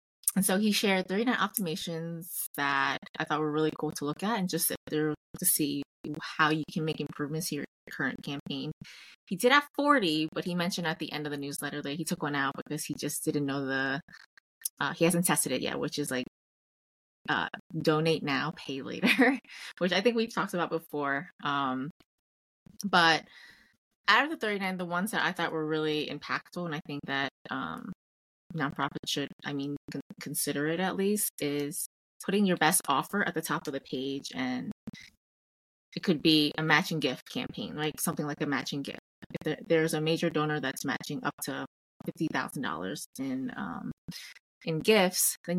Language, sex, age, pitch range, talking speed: English, female, 20-39, 145-180 Hz, 185 wpm